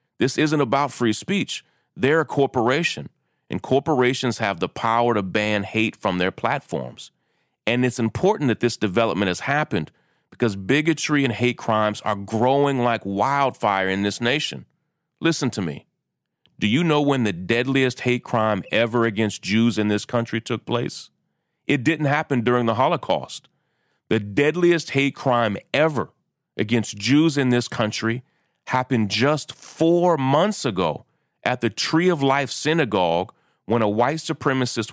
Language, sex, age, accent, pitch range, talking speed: English, male, 40-59, American, 115-145 Hz, 155 wpm